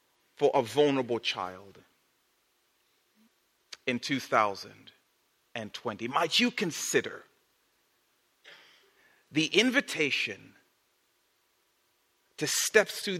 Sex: male